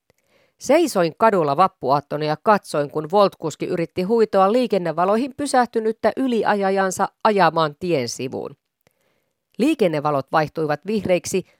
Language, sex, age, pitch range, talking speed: Finnish, female, 40-59, 155-220 Hz, 95 wpm